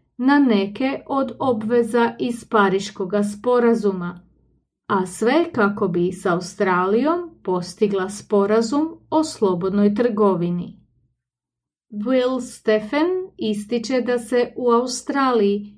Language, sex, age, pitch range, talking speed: English, female, 30-49, 200-255 Hz, 95 wpm